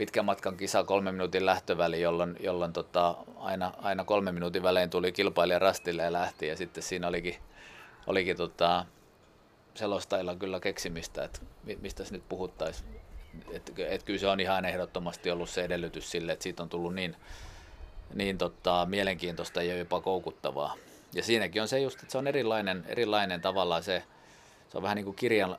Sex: male